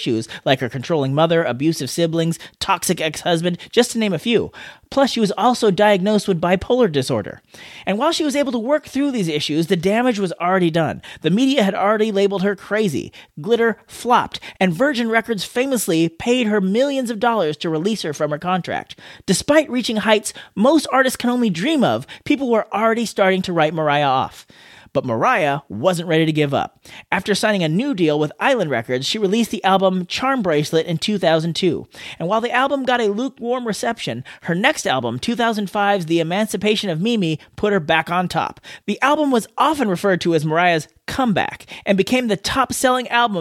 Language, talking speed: English, 185 wpm